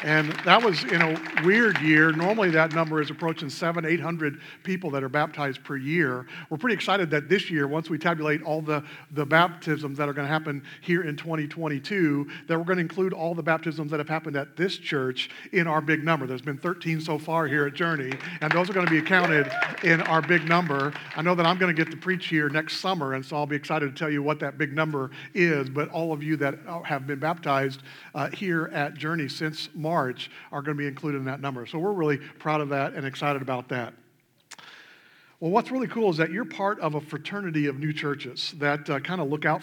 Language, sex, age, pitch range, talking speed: English, male, 50-69, 145-170 Hz, 235 wpm